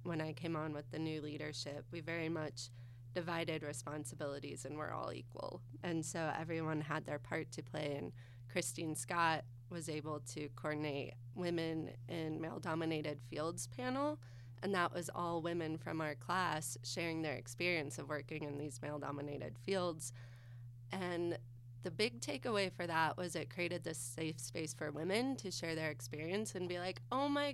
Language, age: English, 20-39